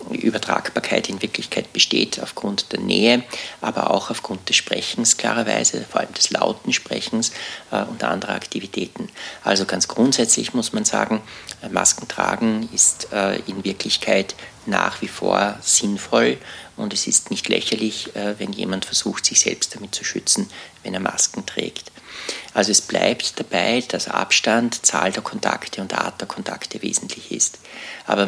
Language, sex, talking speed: German, male, 155 wpm